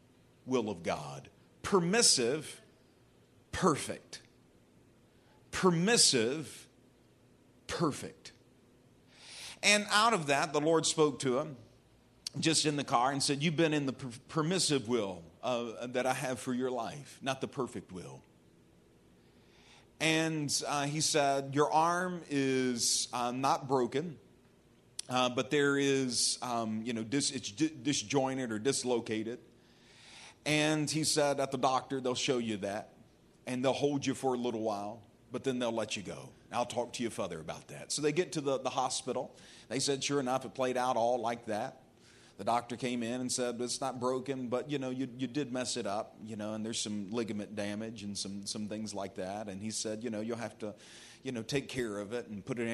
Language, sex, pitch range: English, male, 115-140 Hz